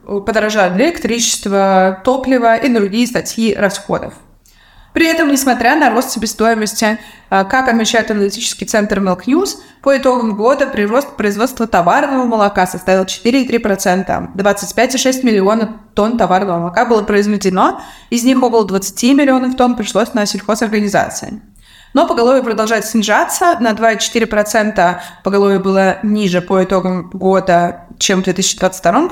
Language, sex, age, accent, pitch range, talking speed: Russian, female, 20-39, native, 200-240 Hz, 125 wpm